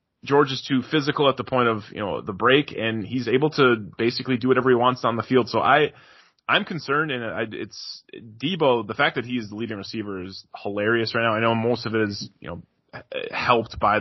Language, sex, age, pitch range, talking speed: English, male, 20-39, 110-130 Hz, 225 wpm